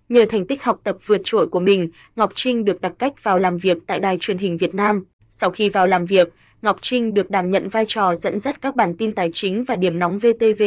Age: 20-39